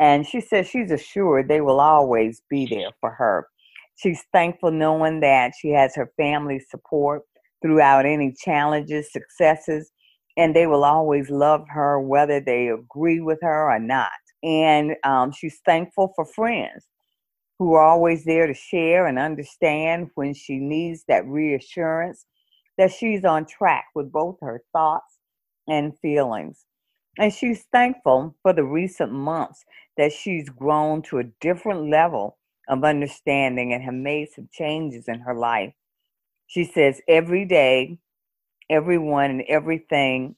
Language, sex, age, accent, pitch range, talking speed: English, female, 50-69, American, 140-170 Hz, 145 wpm